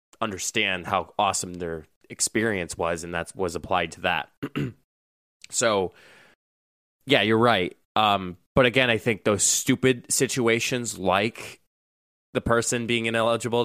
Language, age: English, 20-39